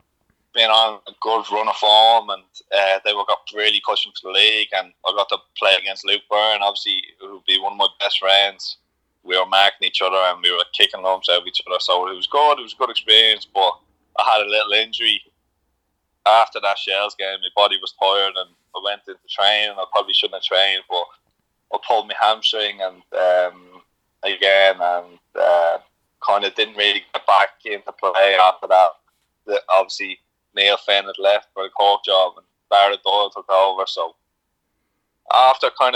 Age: 20-39